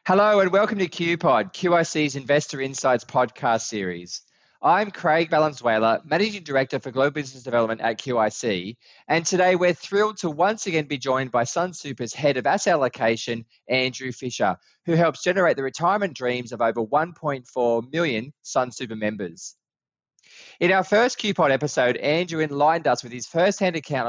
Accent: Australian